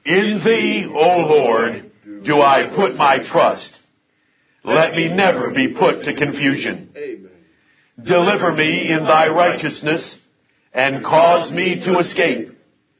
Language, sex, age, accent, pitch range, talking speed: English, male, 60-79, American, 150-185 Hz, 120 wpm